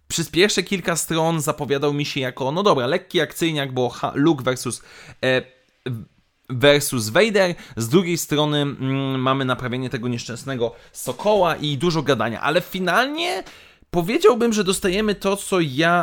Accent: native